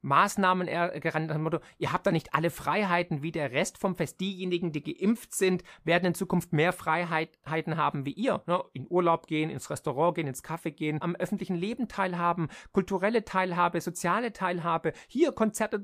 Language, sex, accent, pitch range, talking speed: German, male, German, 155-195 Hz, 175 wpm